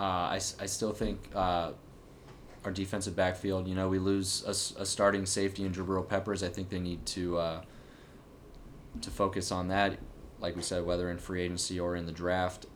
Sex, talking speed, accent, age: male, 195 wpm, American, 20-39